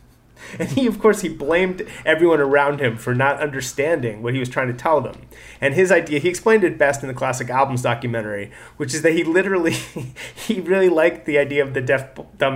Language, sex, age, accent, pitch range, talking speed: English, male, 30-49, American, 125-165 Hz, 215 wpm